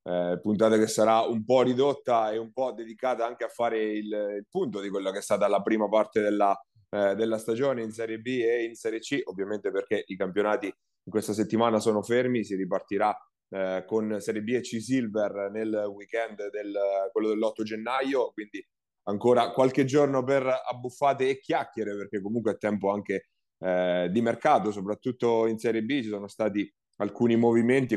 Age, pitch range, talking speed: 30-49, 105-120 Hz, 180 wpm